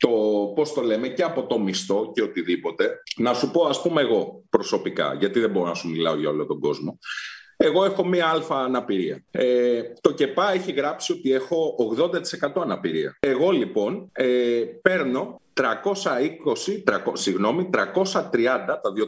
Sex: male